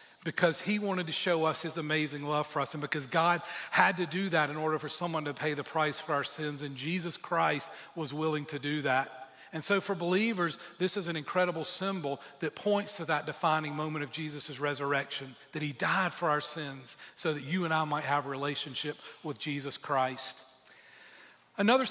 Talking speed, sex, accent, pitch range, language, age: 205 wpm, male, American, 155-190 Hz, English, 40-59